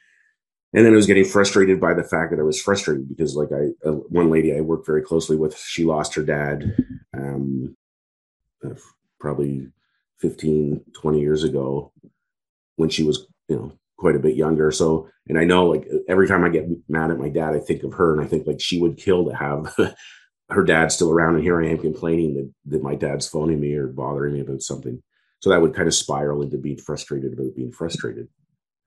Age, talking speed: 30-49, 210 wpm